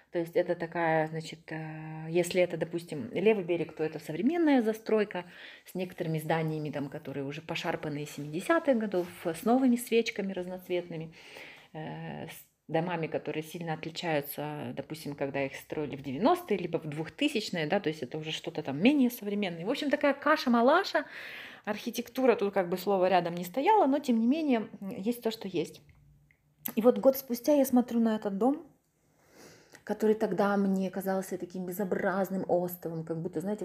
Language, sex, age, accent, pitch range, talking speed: Ukrainian, female, 30-49, native, 165-230 Hz, 160 wpm